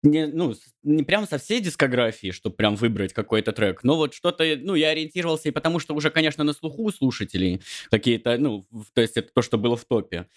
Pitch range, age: 115-150 Hz, 20-39